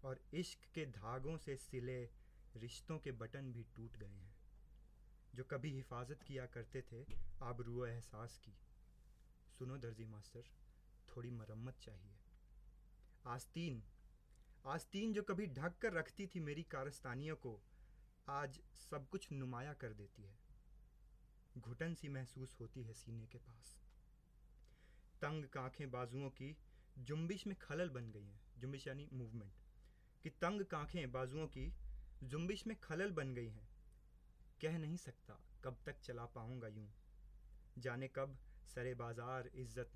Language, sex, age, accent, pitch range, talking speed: Hindi, male, 30-49, native, 115-155 Hz, 140 wpm